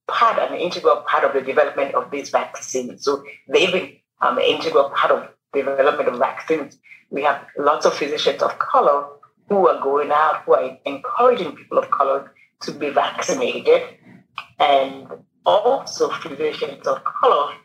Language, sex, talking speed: English, female, 160 wpm